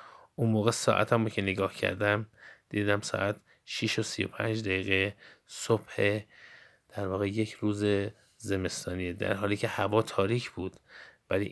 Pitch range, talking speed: 100-115 Hz, 135 wpm